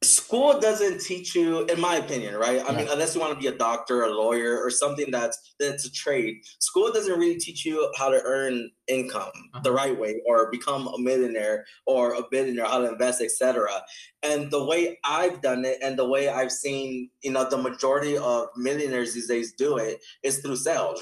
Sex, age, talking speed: male, 20-39, 205 wpm